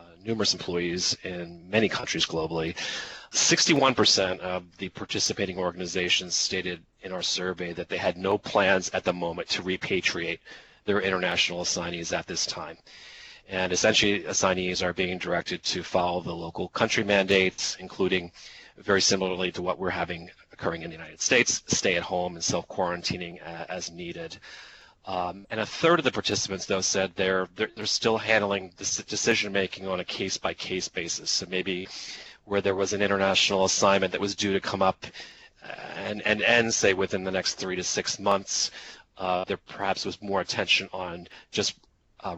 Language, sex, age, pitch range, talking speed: English, male, 30-49, 90-100 Hz, 165 wpm